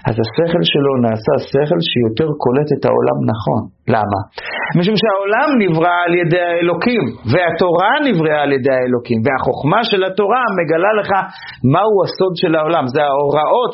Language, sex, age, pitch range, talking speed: Hebrew, male, 40-59, 125-175 Hz, 145 wpm